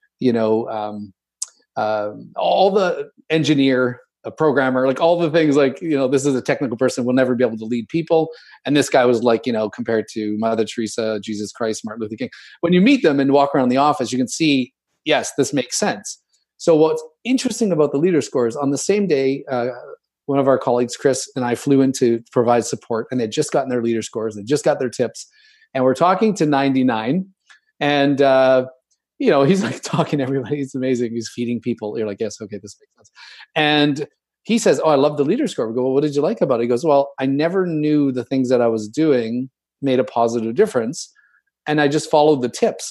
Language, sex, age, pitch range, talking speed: English, male, 40-59, 125-155 Hz, 225 wpm